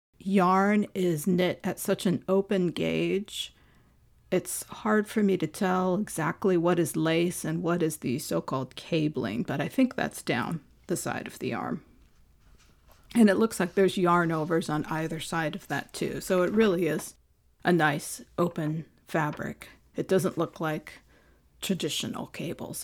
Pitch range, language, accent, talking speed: 155-195 Hz, English, American, 160 wpm